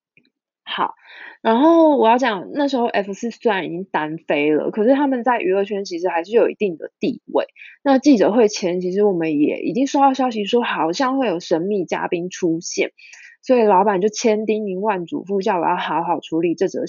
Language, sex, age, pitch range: Chinese, female, 20-39, 180-265 Hz